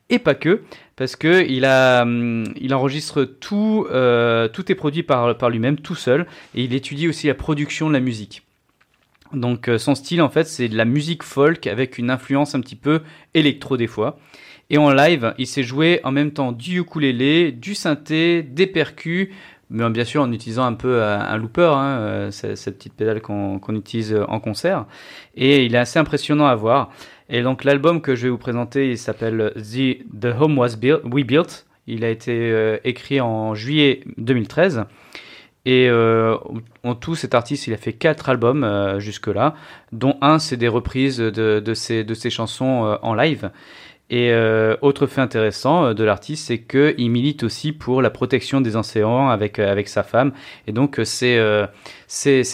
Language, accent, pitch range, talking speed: French, French, 115-145 Hz, 185 wpm